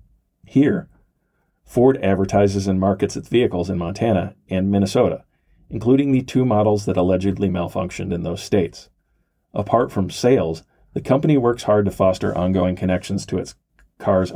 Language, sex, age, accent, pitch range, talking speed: English, male, 40-59, American, 90-110 Hz, 145 wpm